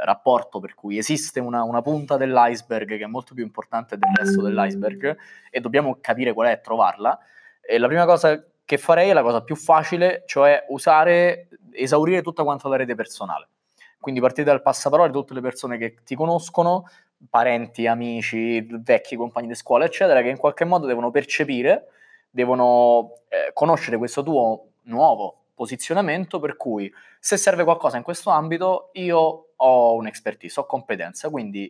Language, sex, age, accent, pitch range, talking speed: Italian, male, 20-39, native, 115-170 Hz, 165 wpm